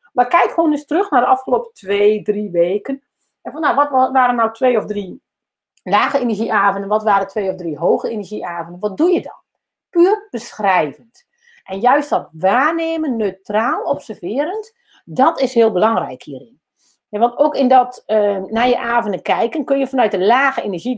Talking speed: 175 wpm